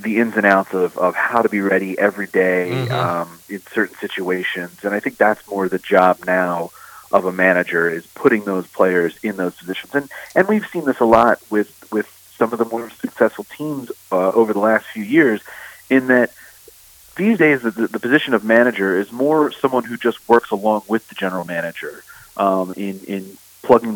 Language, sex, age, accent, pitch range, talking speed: English, male, 30-49, American, 95-120 Hz, 200 wpm